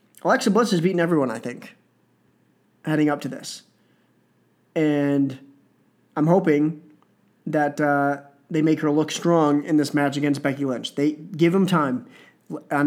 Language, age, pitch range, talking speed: English, 20-39, 145-190 Hz, 150 wpm